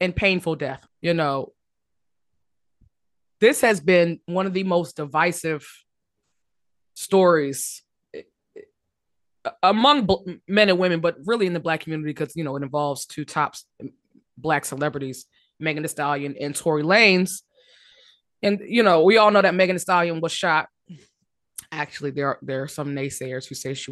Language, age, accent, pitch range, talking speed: English, 20-39, American, 155-220 Hz, 155 wpm